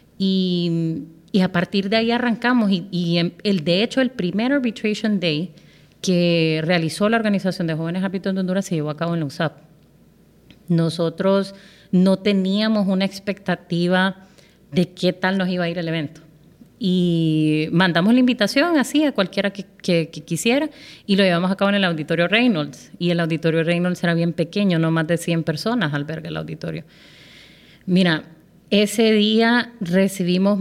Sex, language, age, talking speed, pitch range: female, Spanish, 30-49, 170 wpm, 165-195 Hz